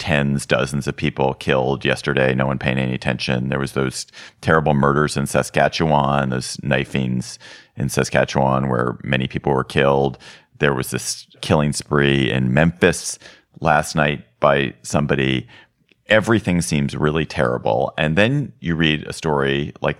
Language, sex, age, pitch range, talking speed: English, male, 40-59, 65-80 Hz, 145 wpm